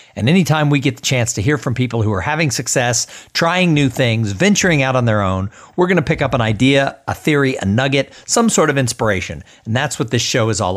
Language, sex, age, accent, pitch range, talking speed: English, male, 50-69, American, 110-165 Hz, 245 wpm